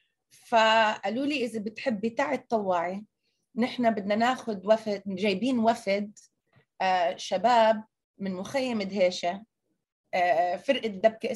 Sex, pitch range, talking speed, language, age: female, 195-250 Hz, 95 wpm, Arabic, 30-49